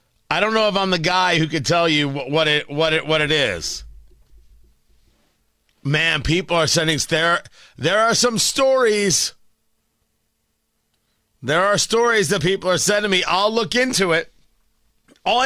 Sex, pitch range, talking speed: male, 110-185 Hz, 155 wpm